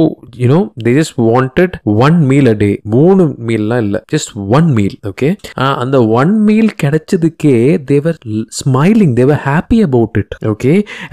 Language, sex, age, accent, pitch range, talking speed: Tamil, male, 20-39, native, 110-155 Hz, 175 wpm